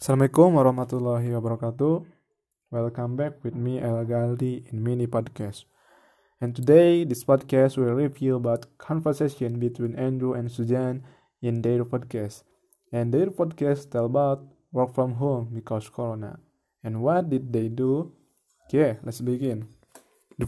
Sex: male